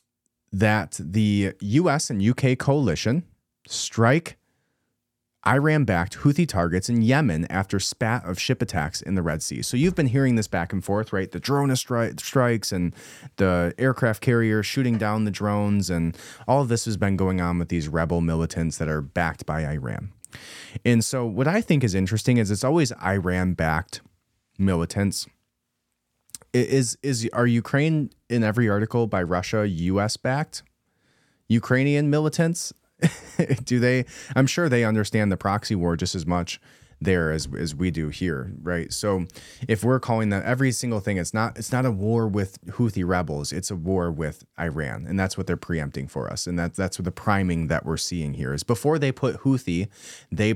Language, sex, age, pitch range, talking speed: English, male, 30-49, 90-125 Hz, 180 wpm